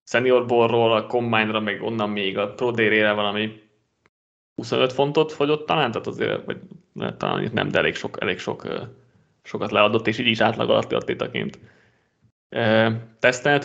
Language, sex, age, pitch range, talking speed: Hungarian, male, 20-39, 110-125 Hz, 140 wpm